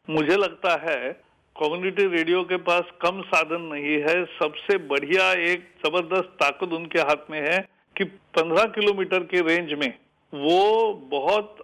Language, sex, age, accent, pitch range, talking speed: Tamil, male, 50-69, native, 165-200 Hz, 145 wpm